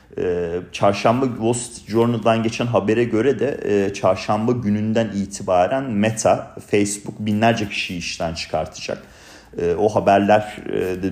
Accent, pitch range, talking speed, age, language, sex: native, 95-115 Hz, 110 wpm, 40-59, Turkish, male